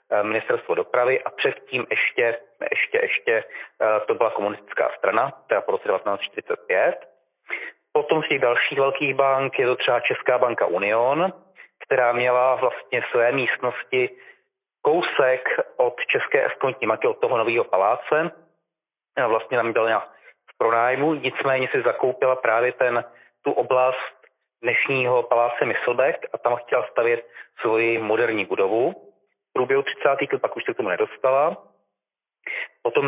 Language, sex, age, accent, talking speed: Czech, male, 30-49, native, 130 wpm